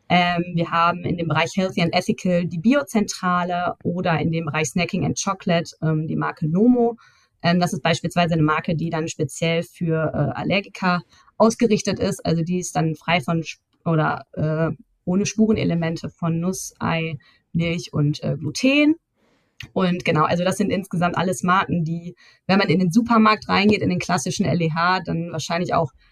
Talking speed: 170 wpm